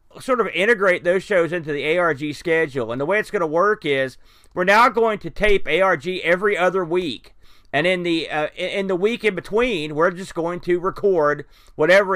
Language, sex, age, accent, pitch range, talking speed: English, male, 40-59, American, 145-185 Hz, 200 wpm